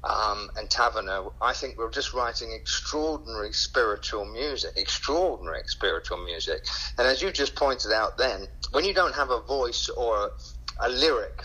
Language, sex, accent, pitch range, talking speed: English, male, British, 100-135 Hz, 165 wpm